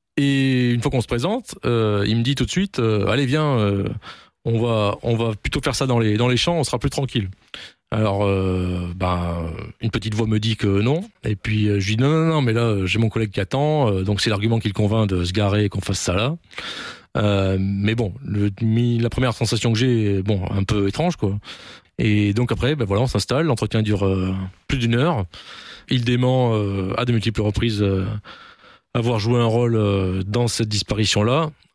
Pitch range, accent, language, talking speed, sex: 100-125 Hz, French, French, 225 wpm, male